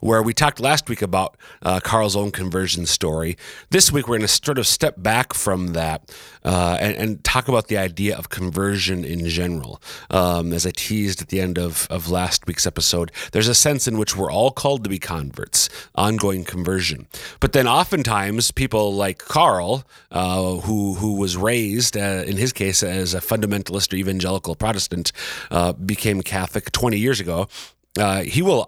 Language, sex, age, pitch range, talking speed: English, male, 30-49, 90-115 Hz, 185 wpm